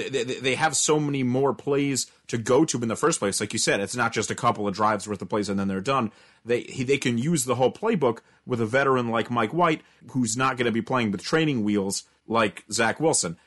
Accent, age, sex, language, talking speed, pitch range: American, 30-49, male, English, 255 wpm, 110-155 Hz